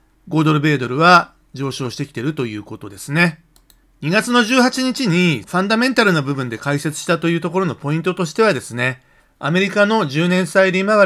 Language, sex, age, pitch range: Japanese, male, 40-59, 135-185 Hz